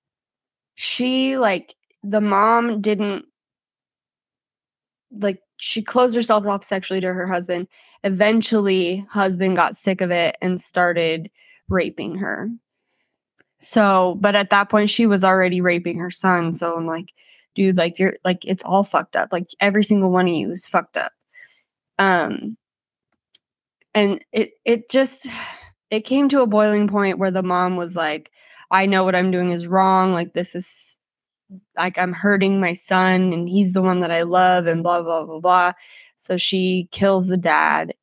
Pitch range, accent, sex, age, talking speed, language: 175-205 Hz, American, female, 20-39, 165 wpm, English